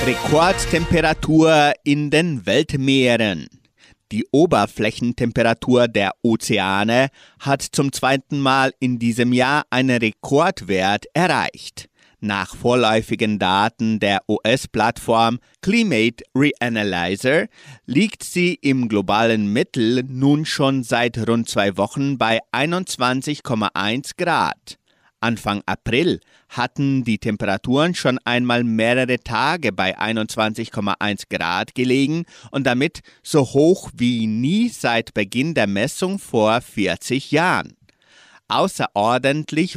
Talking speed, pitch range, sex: 100 wpm, 110-135 Hz, male